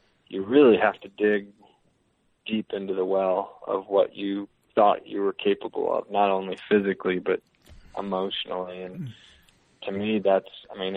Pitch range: 95-105 Hz